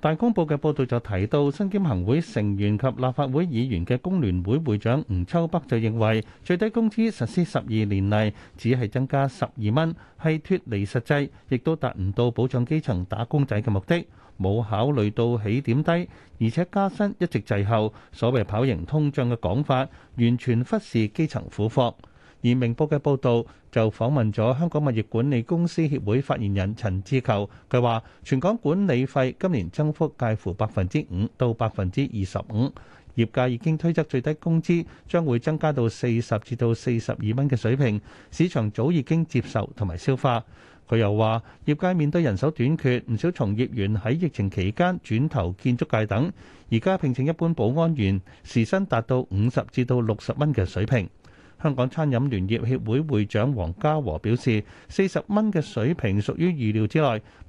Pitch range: 110-150 Hz